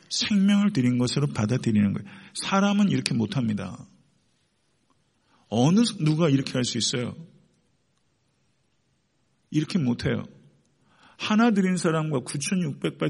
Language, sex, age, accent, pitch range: Korean, male, 50-69, native, 125-175 Hz